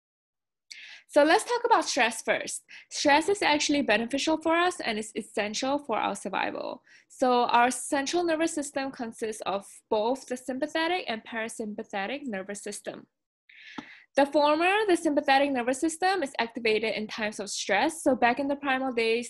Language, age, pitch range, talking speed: English, 20-39, 210-285 Hz, 155 wpm